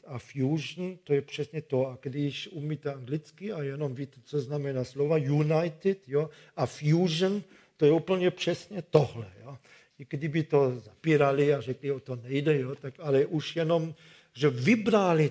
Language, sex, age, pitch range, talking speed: Czech, male, 50-69, 135-160 Hz, 150 wpm